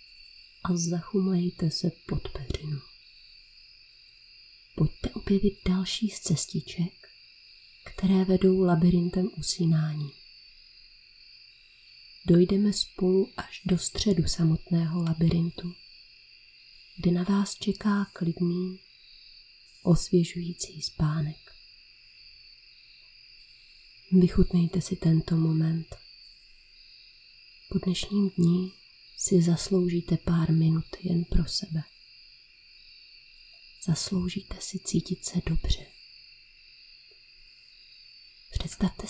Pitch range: 150-190 Hz